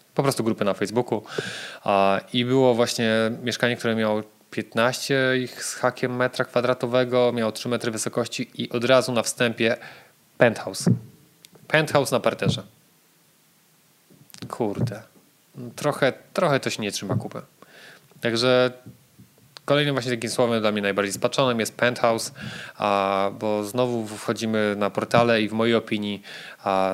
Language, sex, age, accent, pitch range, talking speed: English, male, 20-39, Polish, 105-125 Hz, 130 wpm